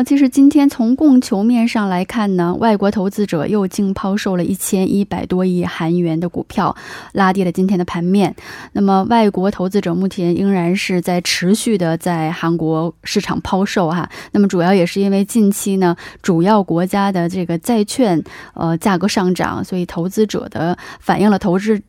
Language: Korean